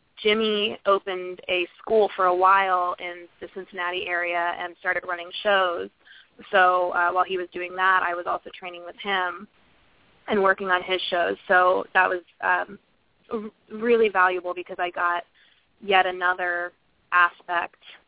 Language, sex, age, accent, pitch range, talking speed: English, female, 20-39, American, 175-185 Hz, 150 wpm